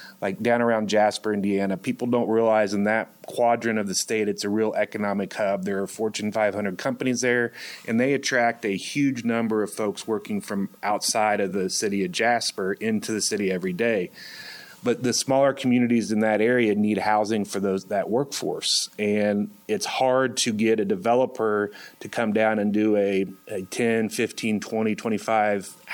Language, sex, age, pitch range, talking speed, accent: English, male, 30-49, 100-115 Hz, 180 wpm, American